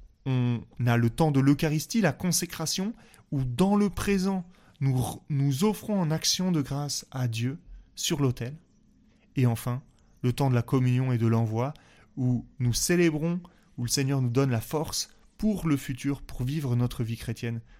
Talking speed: 170 wpm